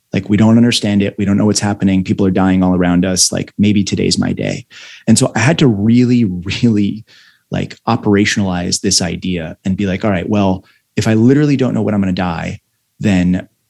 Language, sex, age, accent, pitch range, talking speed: English, male, 30-49, American, 95-120 Hz, 215 wpm